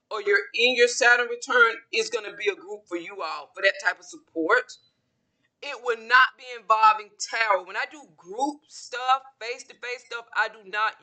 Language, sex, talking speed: English, female, 195 wpm